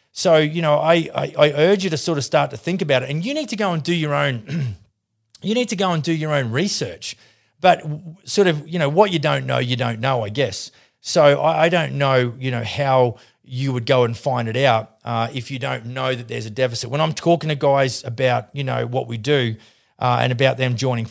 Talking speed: 255 wpm